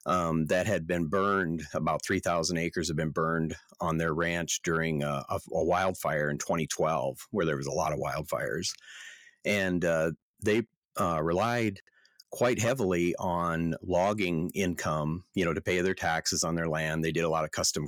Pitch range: 80-90 Hz